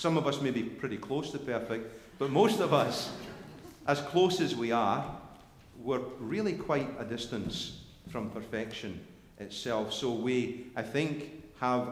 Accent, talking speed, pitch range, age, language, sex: British, 155 wpm, 115-150 Hz, 40-59, English, male